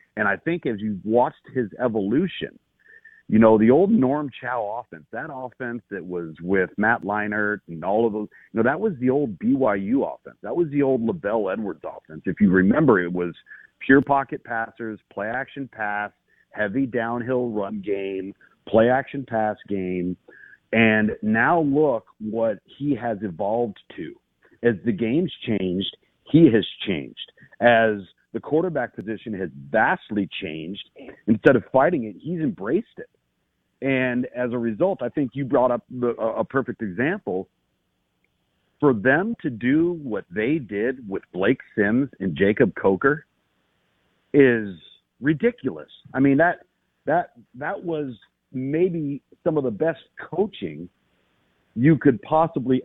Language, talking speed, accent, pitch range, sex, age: English, 150 wpm, American, 105-145 Hz, male, 50-69